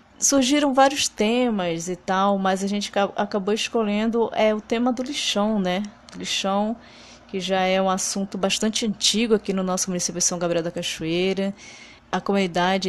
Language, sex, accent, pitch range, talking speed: Portuguese, female, Brazilian, 180-215 Hz, 160 wpm